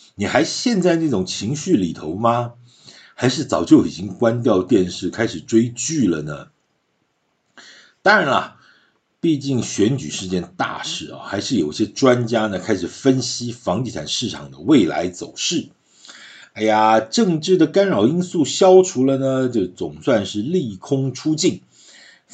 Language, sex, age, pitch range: Chinese, male, 50-69, 115-165 Hz